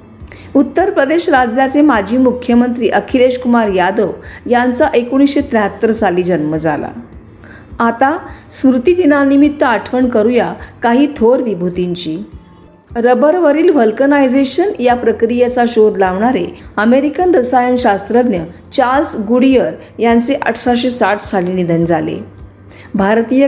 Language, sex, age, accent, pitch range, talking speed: Marathi, female, 40-59, native, 200-265 Hz, 95 wpm